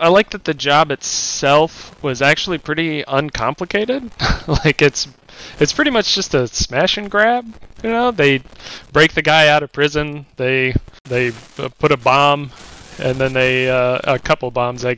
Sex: male